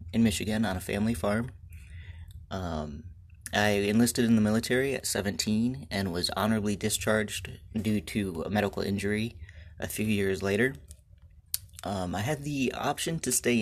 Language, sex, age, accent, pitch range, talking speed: English, male, 30-49, American, 90-110 Hz, 150 wpm